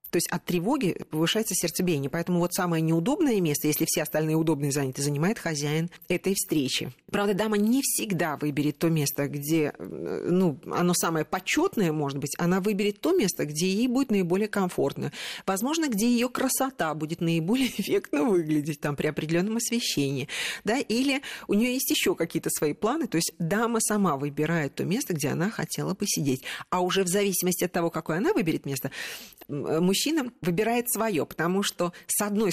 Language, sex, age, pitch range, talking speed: Russian, female, 40-59, 160-205 Hz, 170 wpm